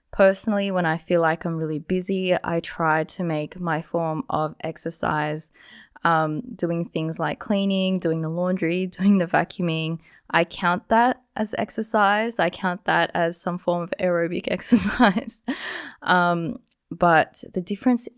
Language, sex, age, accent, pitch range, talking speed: English, female, 20-39, Australian, 160-190 Hz, 150 wpm